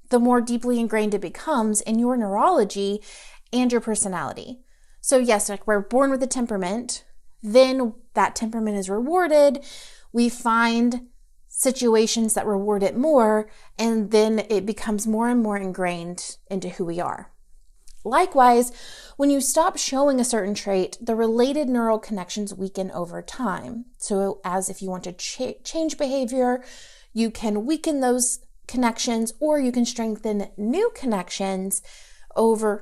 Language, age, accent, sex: English, 30-49, American, female